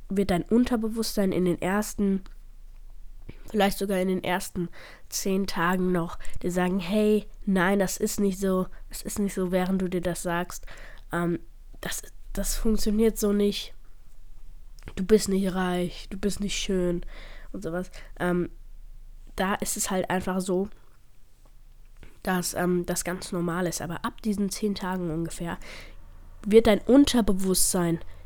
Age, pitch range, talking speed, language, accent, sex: 20-39, 175-200 Hz, 140 wpm, German, German, female